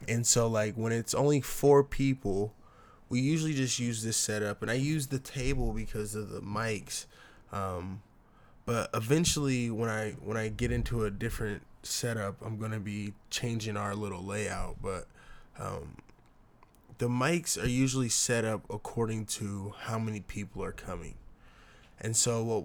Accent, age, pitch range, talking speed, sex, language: American, 20-39, 105-120 Hz, 160 wpm, male, English